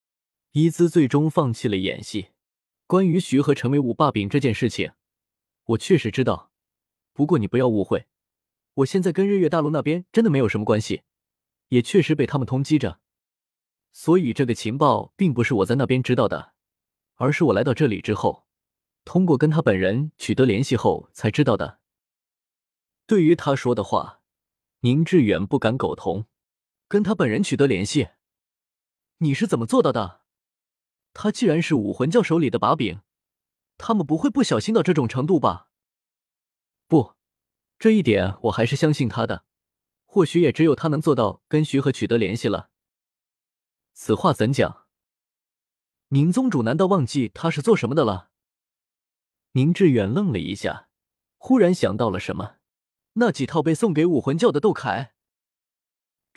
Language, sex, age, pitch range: Chinese, male, 20-39, 115-165 Hz